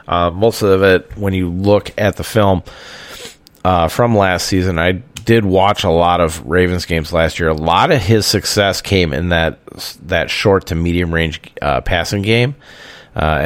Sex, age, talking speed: male, 30-49, 185 wpm